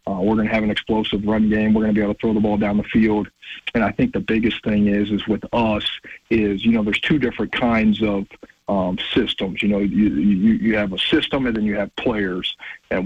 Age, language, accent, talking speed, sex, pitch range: 40-59, English, American, 255 wpm, male, 105-110 Hz